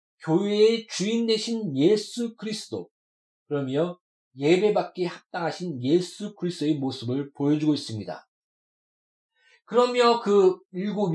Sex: male